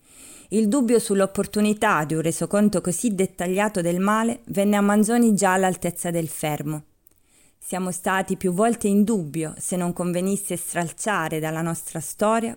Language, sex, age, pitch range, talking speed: Italian, female, 30-49, 160-200 Hz, 145 wpm